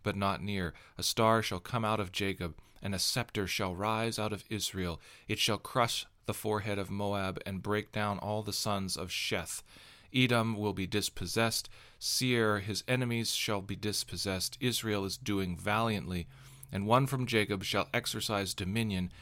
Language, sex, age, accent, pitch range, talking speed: English, male, 40-59, American, 95-115 Hz, 170 wpm